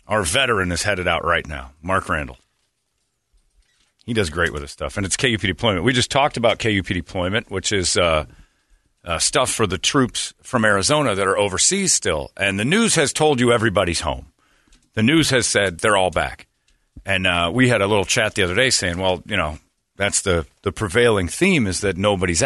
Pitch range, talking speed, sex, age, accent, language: 85-110 Hz, 205 wpm, male, 40-59, American, English